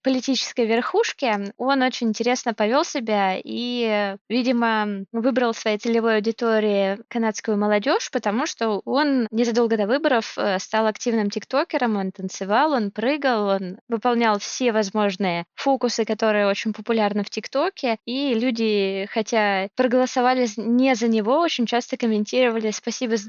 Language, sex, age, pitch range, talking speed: Russian, female, 20-39, 215-255 Hz, 130 wpm